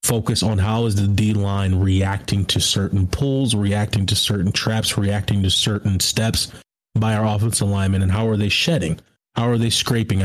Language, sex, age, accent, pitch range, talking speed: English, male, 30-49, American, 100-115 Hz, 185 wpm